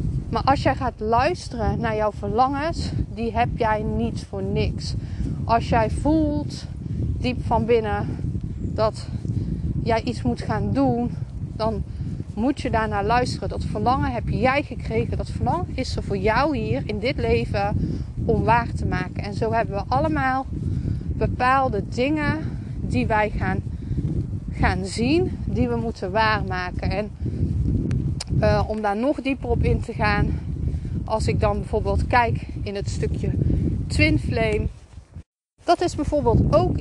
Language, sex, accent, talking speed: Dutch, female, Dutch, 145 wpm